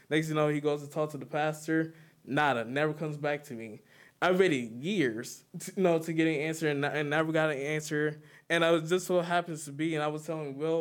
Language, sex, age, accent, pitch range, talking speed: English, male, 20-39, American, 140-160 Hz, 255 wpm